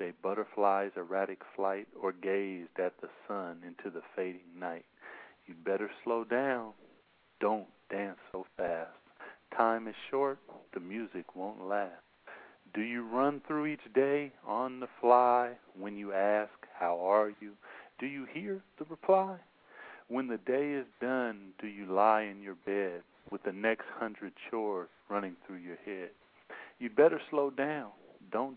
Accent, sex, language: American, male, English